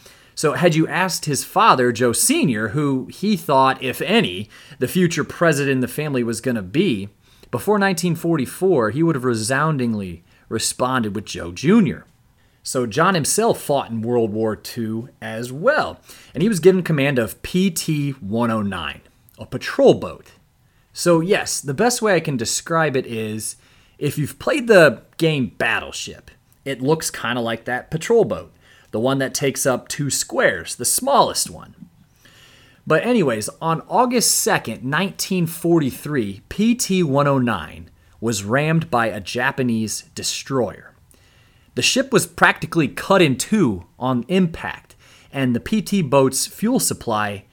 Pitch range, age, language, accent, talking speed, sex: 115-170 Hz, 30-49, English, American, 145 wpm, male